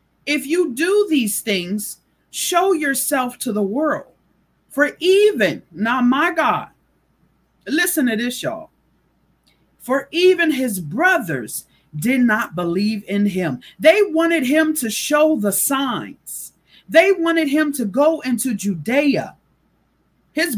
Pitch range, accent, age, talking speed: 230-315 Hz, American, 40-59, 125 wpm